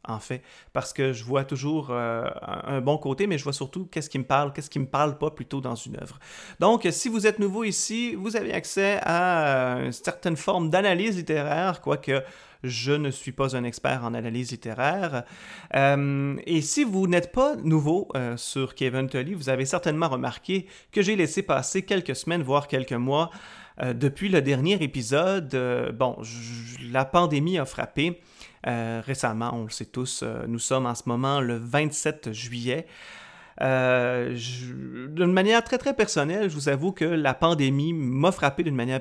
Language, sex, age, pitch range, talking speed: French, male, 30-49, 130-175 Hz, 185 wpm